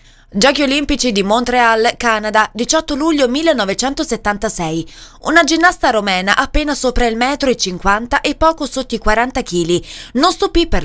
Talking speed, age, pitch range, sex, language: 145 wpm, 20-39, 205-275 Hz, female, Italian